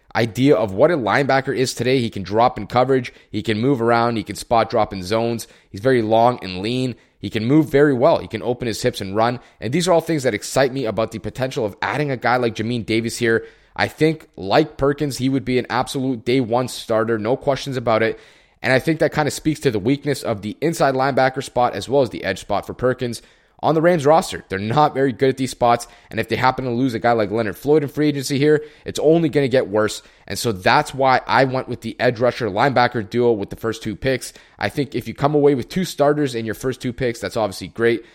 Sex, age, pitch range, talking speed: male, 20-39, 115-140 Hz, 255 wpm